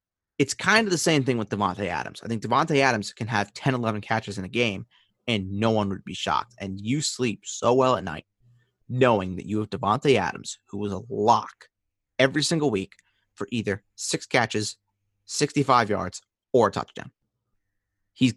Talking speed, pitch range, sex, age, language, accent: 185 wpm, 100-130 Hz, male, 30-49, English, American